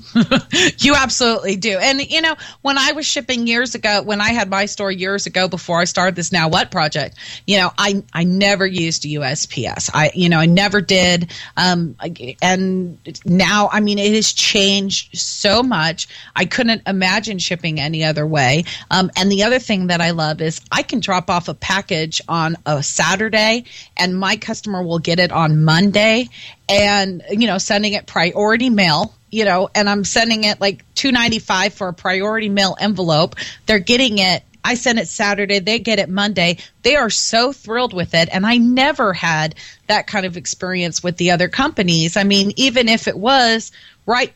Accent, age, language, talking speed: American, 30-49, English, 185 wpm